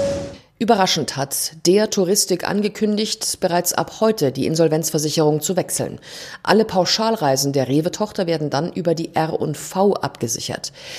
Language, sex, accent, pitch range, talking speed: German, female, German, 150-200 Hz, 130 wpm